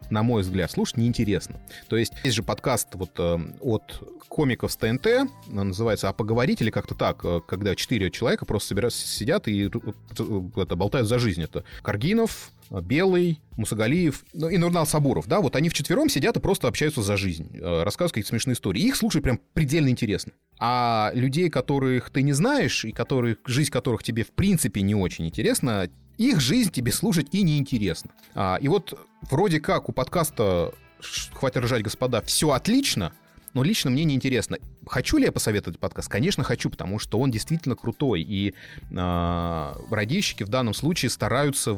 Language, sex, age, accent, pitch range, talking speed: Russian, male, 30-49, native, 105-150 Hz, 165 wpm